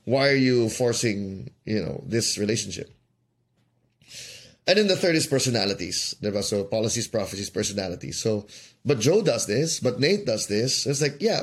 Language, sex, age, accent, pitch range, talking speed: English, male, 20-39, Filipino, 110-150 Hz, 150 wpm